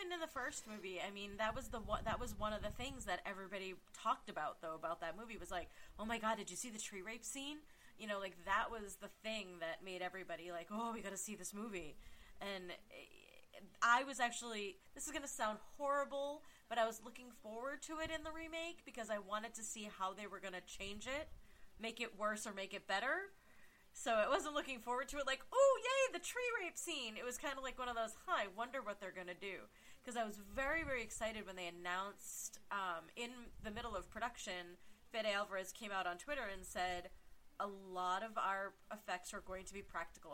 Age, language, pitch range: 30-49, English, 185-240 Hz